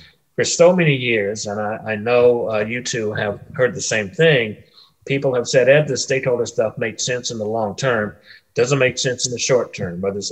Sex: male